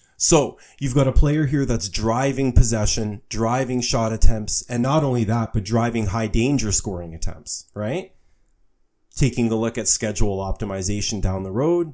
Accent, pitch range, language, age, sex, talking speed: American, 100-125 Hz, English, 30-49, male, 160 wpm